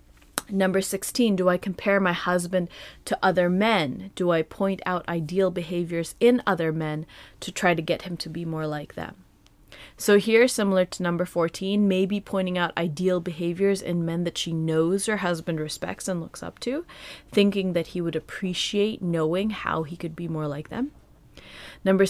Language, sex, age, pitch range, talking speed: English, female, 30-49, 165-195 Hz, 180 wpm